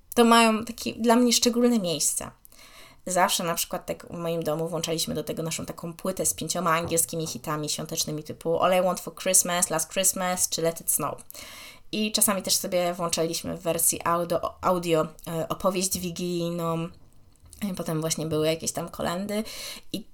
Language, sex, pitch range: Polish, female, 165-200 Hz